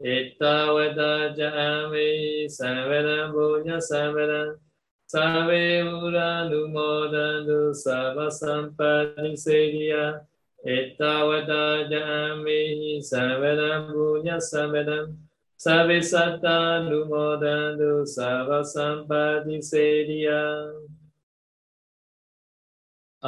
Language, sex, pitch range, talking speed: Vietnamese, male, 150-170 Hz, 55 wpm